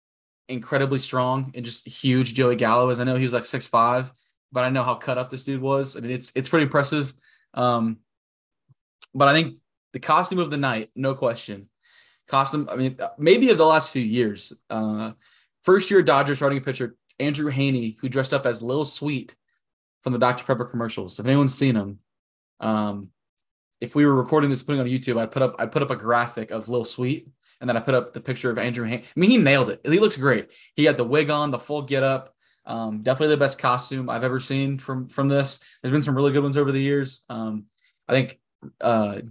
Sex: male